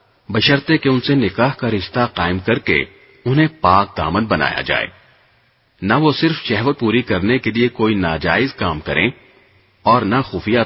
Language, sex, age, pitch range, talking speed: Arabic, male, 40-59, 90-130 Hz, 170 wpm